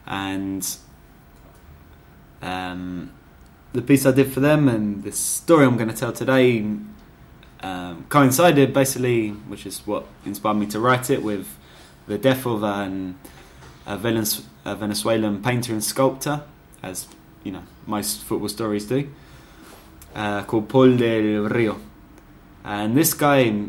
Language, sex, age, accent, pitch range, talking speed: English, male, 10-29, British, 90-115 Hz, 130 wpm